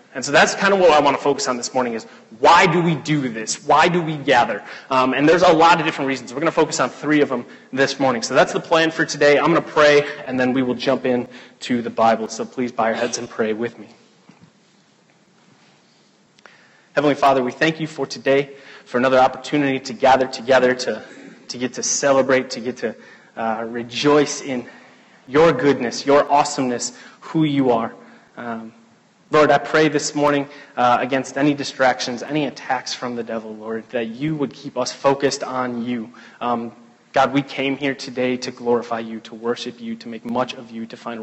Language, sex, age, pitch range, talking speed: English, male, 30-49, 120-145 Hz, 210 wpm